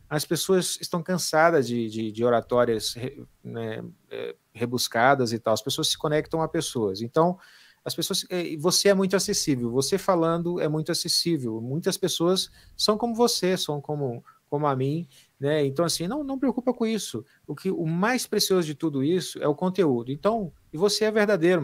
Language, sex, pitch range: Portuguese, male, 130-165 Hz